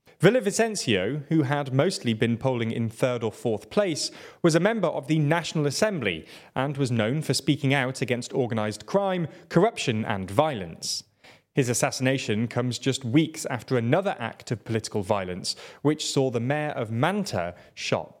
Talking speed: 160 wpm